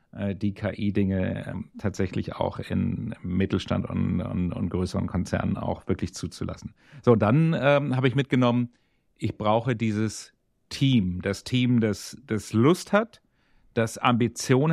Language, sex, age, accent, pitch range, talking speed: German, male, 40-59, German, 105-130 Hz, 125 wpm